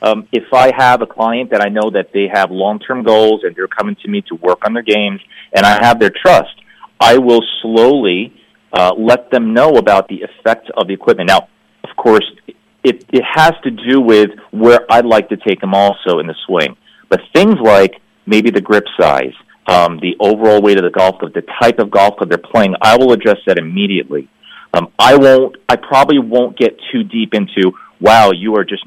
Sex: male